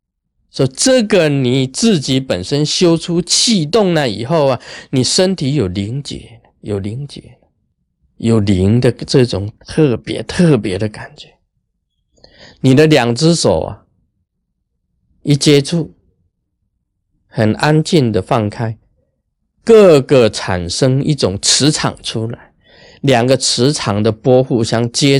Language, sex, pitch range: Chinese, male, 110-150 Hz